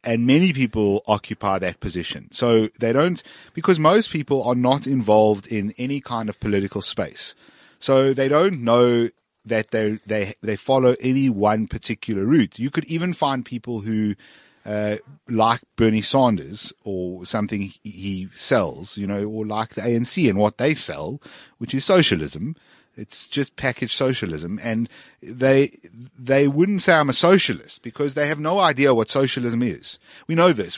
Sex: male